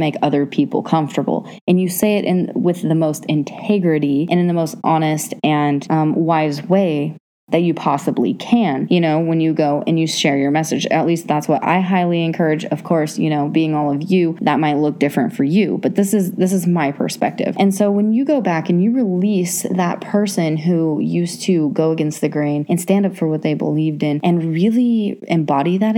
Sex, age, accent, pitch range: female, 20-39, American, 150-180 Hz